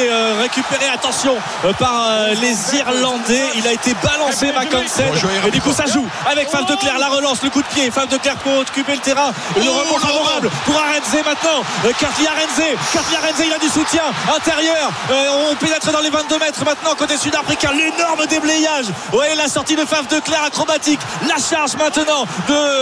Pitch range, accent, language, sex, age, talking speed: 245-290 Hz, French, French, male, 30-49, 195 wpm